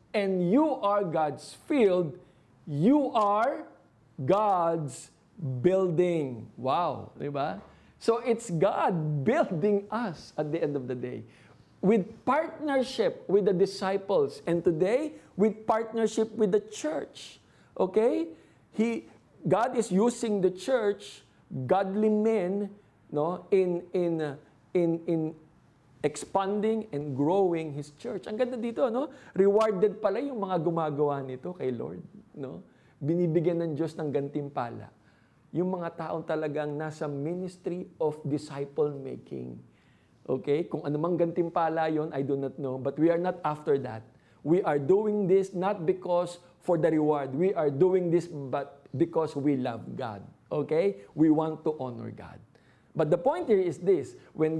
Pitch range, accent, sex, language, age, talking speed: 145-200 Hz, native, male, Filipino, 50-69, 140 wpm